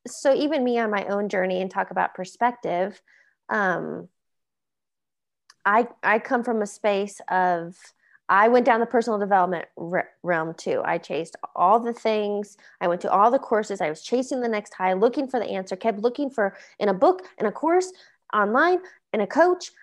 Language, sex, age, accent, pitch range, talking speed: English, female, 20-39, American, 205-275 Hz, 190 wpm